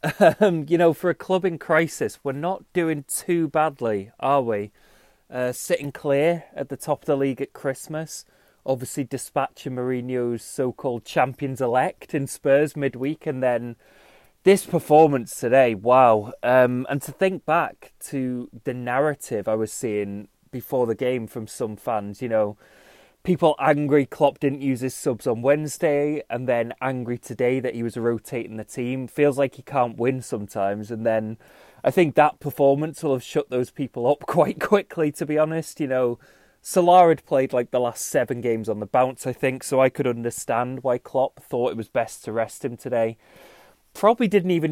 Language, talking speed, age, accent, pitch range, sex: English, 180 wpm, 20-39, British, 120-150 Hz, male